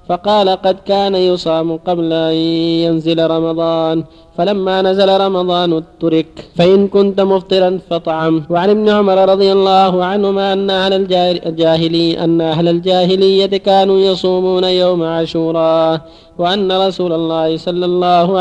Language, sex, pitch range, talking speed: Arabic, male, 165-195 Hz, 110 wpm